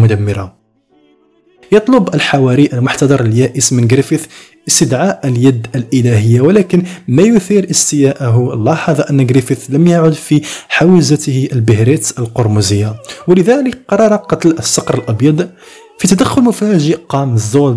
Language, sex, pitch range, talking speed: Arabic, male, 120-175 Hz, 110 wpm